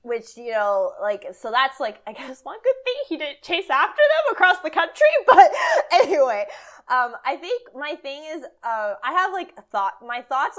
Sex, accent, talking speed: female, American, 200 wpm